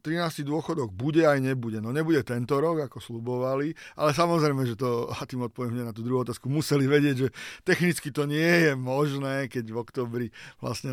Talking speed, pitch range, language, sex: 190 wpm, 120-150 Hz, Slovak, male